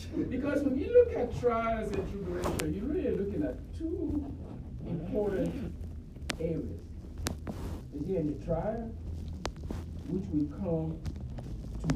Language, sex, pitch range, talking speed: English, male, 80-125 Hz, 110 wpm